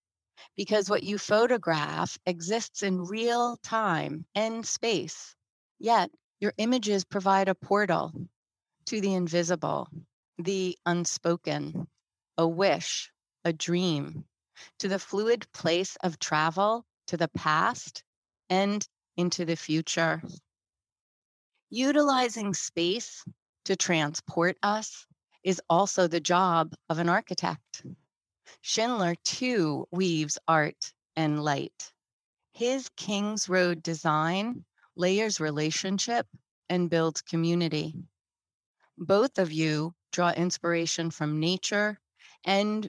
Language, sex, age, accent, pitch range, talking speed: English, female, 30-49, American, 165-205 Hz, 100 wpm